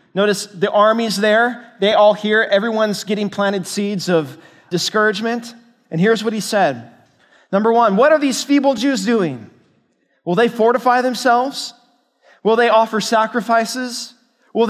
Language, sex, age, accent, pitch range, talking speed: English, male, 20-39, American, 185-240 Hz, 145 wpm